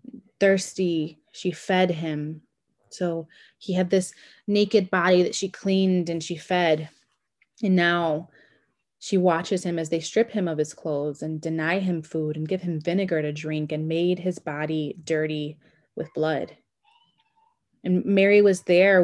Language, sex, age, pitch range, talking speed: English, female, 20-39, 155-185 Hz, 155 wpm